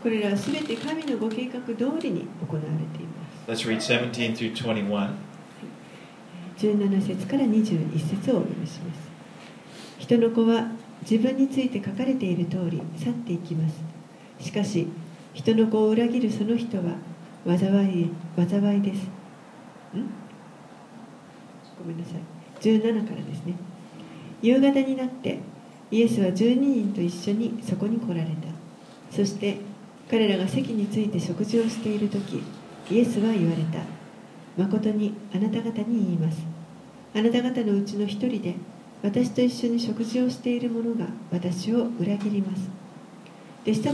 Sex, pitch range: female, 175-230 Hz